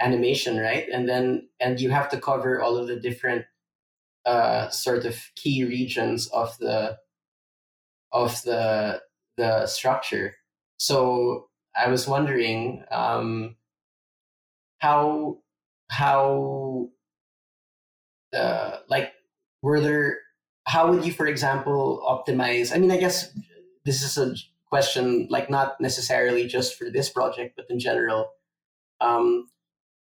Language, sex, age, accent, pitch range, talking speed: English, male, 20-39, Filipino, 115-140 Hz, 120 wpm